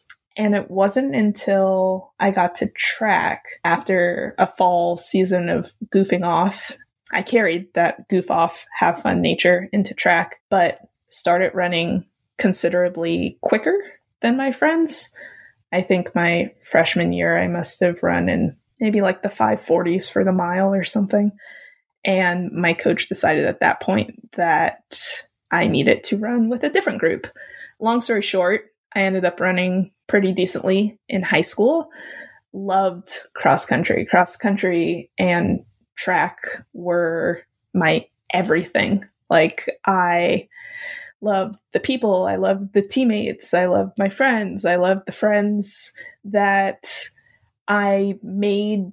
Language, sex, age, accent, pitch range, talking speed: English, female, 20-39, American, 180-210 Hz, 135 wpm